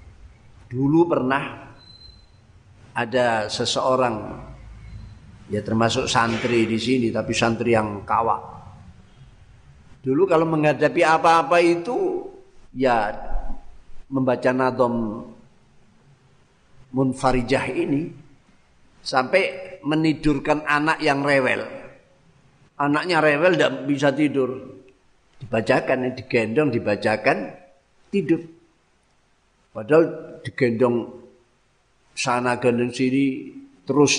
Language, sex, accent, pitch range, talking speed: Indonesian, male, native, 115-160 Hz, 75 wpm